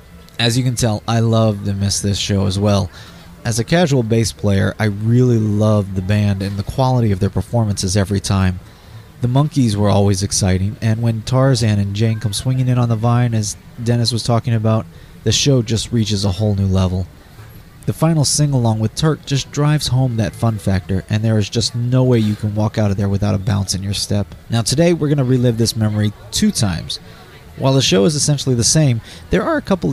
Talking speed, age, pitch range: 220 wpm, 30-49, 100-125 Hz